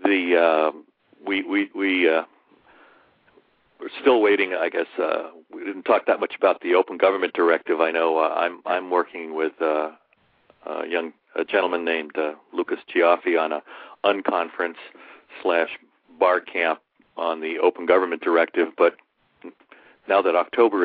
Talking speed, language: 155 wpm, English